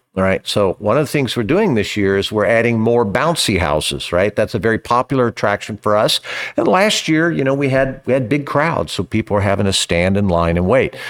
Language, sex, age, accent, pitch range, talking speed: English, male, 50-69, American, 95-130 Hz, 250 wpm